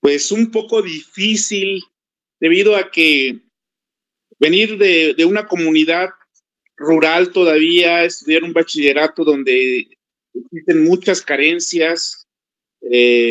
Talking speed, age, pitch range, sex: 100 wpm, 40-59, 150-200 Hz, male